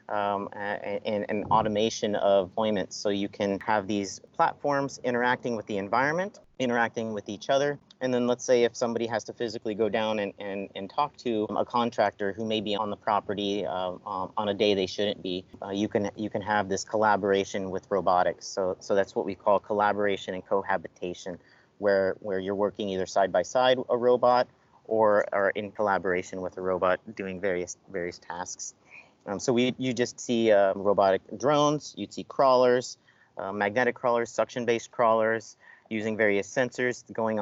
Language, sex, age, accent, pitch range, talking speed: English, male, 40-59, American, 100-125 Hz, 185 wpm